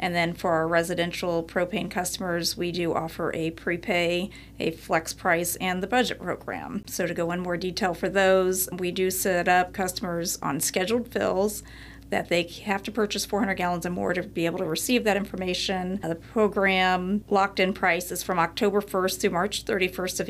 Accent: American